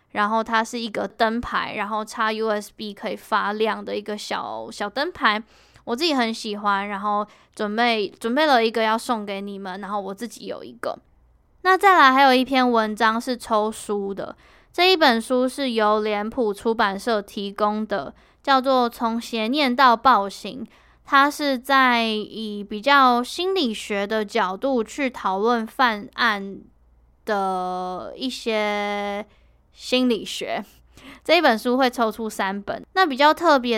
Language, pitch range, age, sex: Chinese, 210-270 Hz, 10-29, female